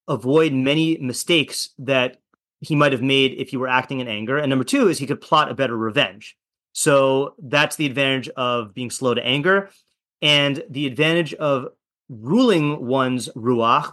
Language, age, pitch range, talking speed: English, 30-49, 130-150 Hz, 170 wpm